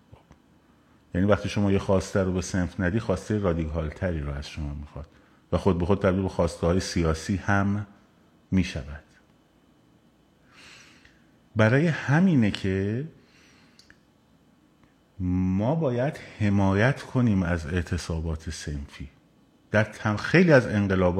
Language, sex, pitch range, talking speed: Persian, male, 95-130 Hz, 120 wpm